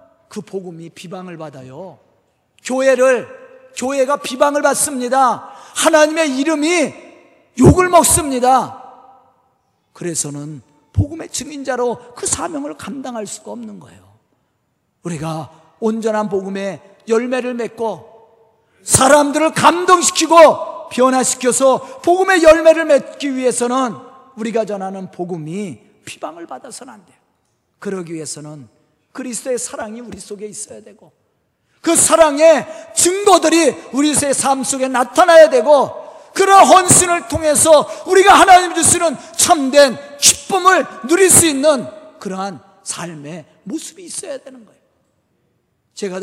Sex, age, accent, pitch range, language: male, 40-59, native, 200-320 Hz, Korean